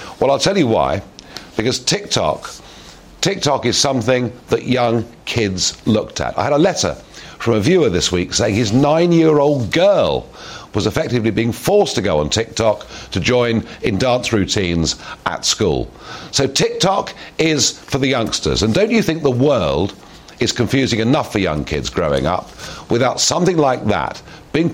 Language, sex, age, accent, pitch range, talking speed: English, male, 50-69, British, 100-145 Hz, 165 wpm